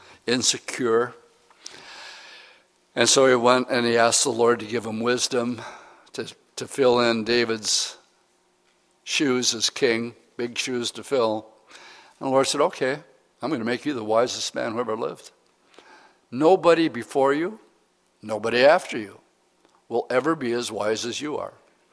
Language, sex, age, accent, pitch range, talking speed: English, male, 60-79, American, 120-155 Hz, 155 wpm